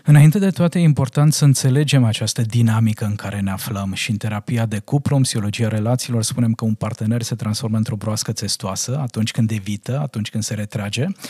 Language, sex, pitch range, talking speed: Romanian, male, 115-135 Hz, 190 wpm